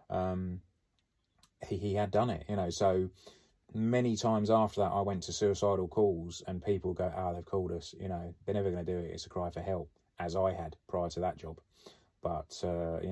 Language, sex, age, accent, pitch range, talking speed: English, male, 30-49, British, 90-100 Hz, 220 wpm